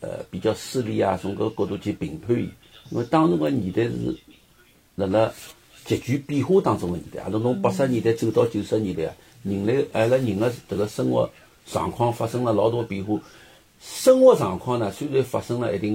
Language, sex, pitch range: Chinese, male, 110-170 Hz